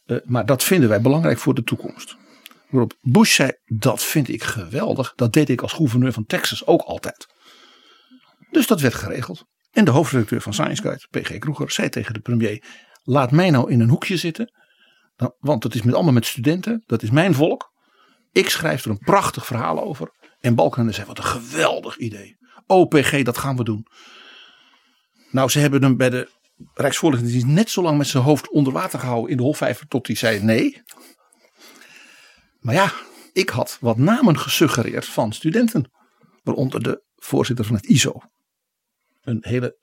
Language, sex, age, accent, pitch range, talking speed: Dutch, male, 50-69, Dutch, 120-155 Hz, 180 wpm